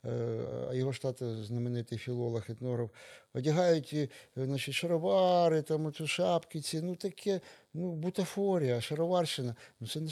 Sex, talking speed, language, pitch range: male, 125 wpm, Ukrainian, 120-155 Hz